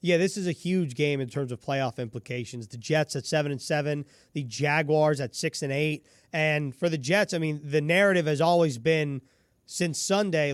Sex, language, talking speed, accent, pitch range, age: male, English, 210 wpm, American, 145-180 Hz, 30-49